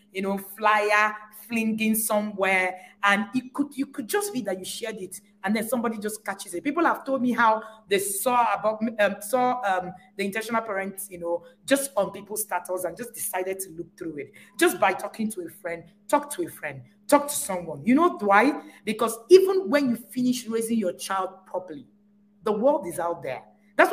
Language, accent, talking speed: English, Nigerian, 200 wpm